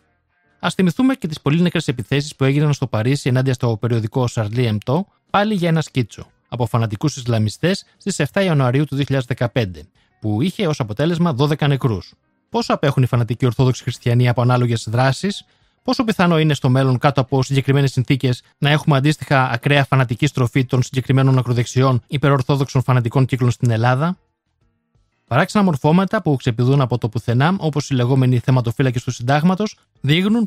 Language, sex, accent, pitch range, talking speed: Greek, male, native, 125-165 Hz, 155 wpm